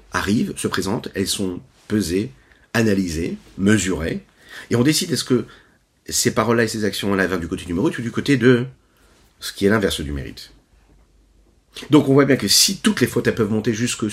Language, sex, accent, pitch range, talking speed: French, male, French, 90-120 Hz, 195 wpm